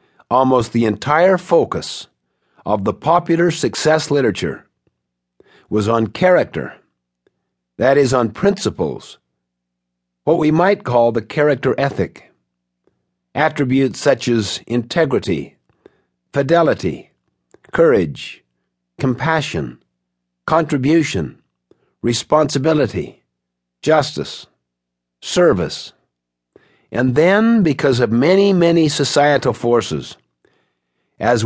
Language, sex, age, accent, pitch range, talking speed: English, male, 50-69, American, 95-155 Hz, 80 wpm